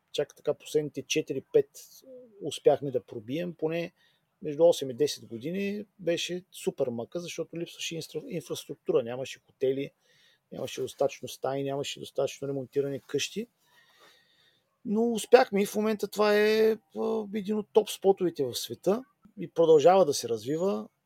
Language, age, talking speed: Bulgarian, 40-59, 130 wpm